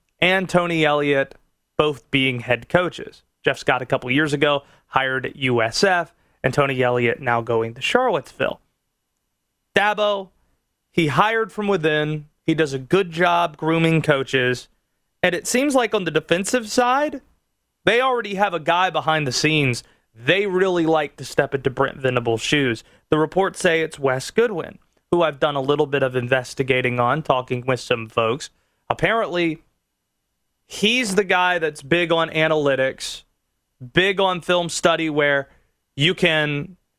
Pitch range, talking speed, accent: 140-180 Hz, 150 wpm, American